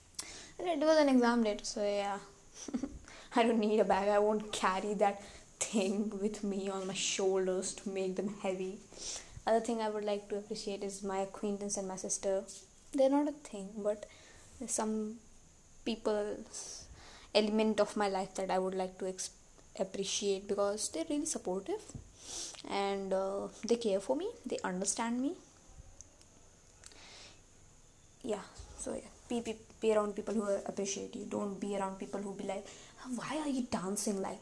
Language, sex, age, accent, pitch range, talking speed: English, female, 20-39, Indian, 195-235 Hz, 160 wpm